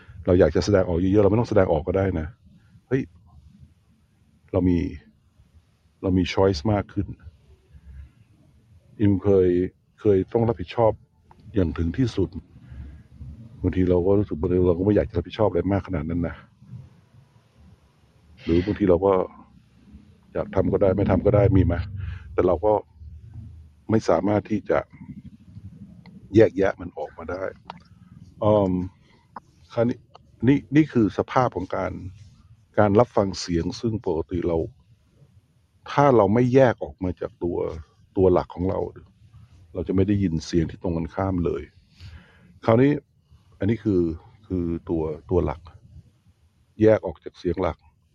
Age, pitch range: 60-79, 85-105 Hz